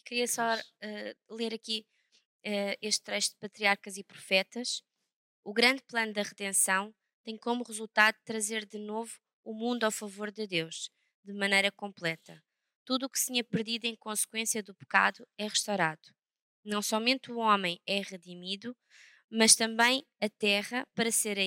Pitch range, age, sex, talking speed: 195-225 Hz, 20-39, female, 160 wpm